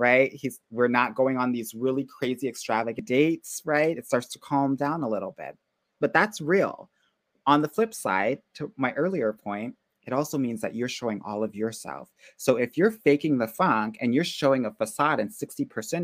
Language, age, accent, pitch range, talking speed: English, 30-49, American, 115-150 Hz, 195 wpm